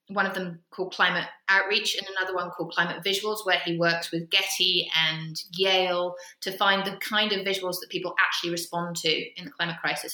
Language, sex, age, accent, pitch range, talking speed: English, female, 20-39, British, 180-220 Hz, 200 wpm